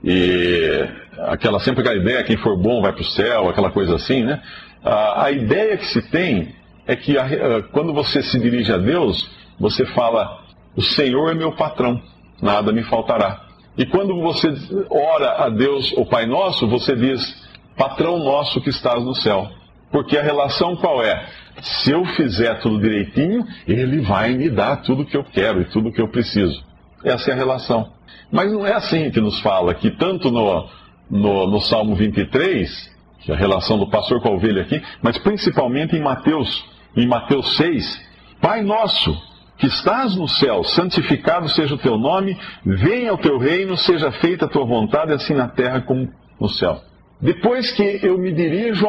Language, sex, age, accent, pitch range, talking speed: Portuguese, male, 40-59, Brazilian, 115-170 Hz, 180 wpm